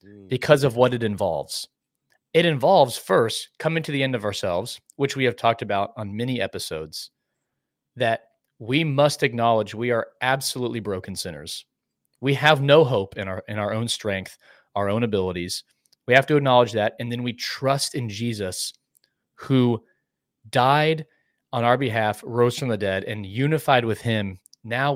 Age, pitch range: 30-49, 110-145 Hz